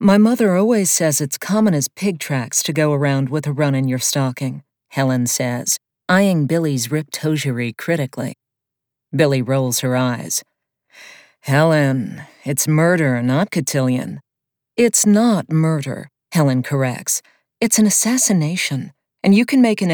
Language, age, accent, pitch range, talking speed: English, 50-69, American, 130-170 Hz, 140 wpm